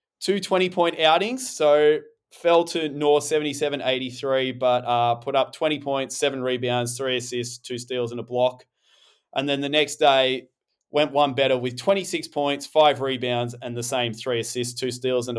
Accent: Australian